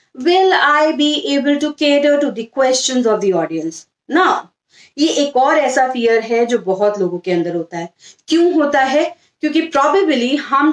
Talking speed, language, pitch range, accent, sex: 140 wpm, English, 225-300 Hz, Indian, female